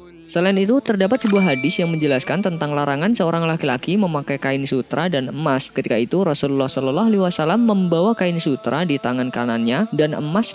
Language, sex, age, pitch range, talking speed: Indonesian, female, 20-39, 135-195 Hz, 160 wpm